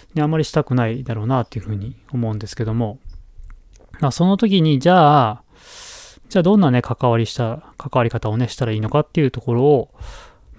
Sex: male